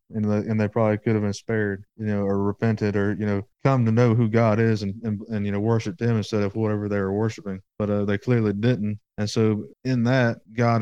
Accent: American